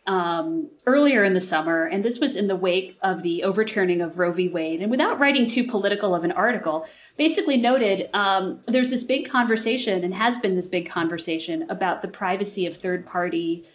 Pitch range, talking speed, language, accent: 180-240 Hz, 190 wpm, English, American